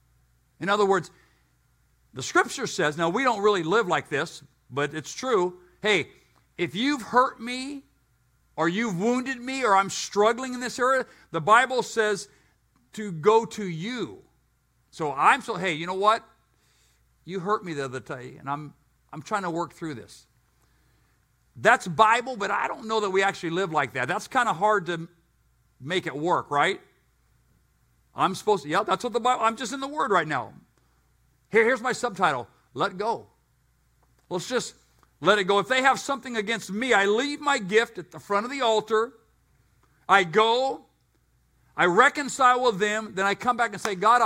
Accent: American